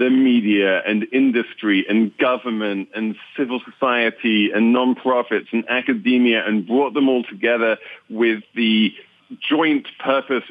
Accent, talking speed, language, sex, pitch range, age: British, 125 wpm, English, male, 95-125 Hz, 40-59